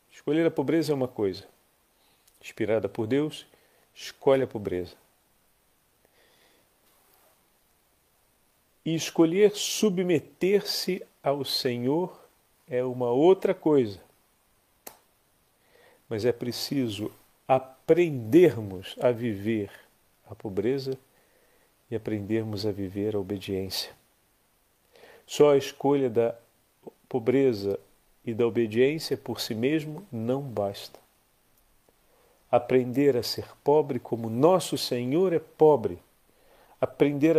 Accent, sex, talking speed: Brazilian, male, 95 wpm